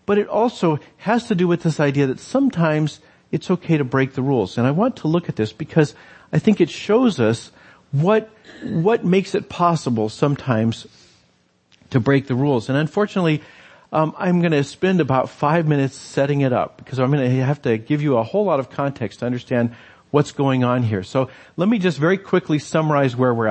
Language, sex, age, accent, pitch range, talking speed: English, male, 50-69, American, 125-165 Hz, 205 wpm